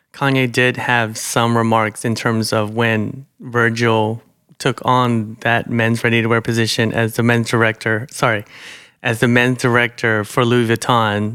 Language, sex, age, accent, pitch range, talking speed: English, male, 30-49, American, 110-130 Hz, 160 wpm